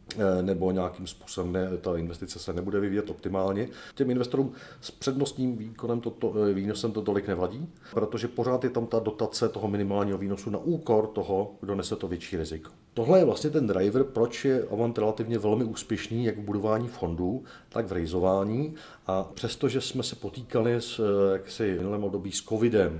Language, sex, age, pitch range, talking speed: Czech, male, 40-59, 95-115 Hz, 175 wpm